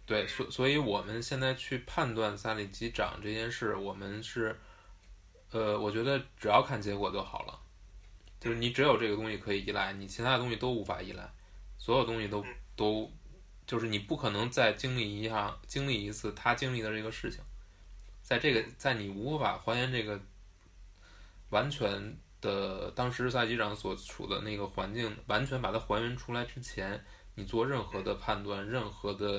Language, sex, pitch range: English, male, 95-120 Hz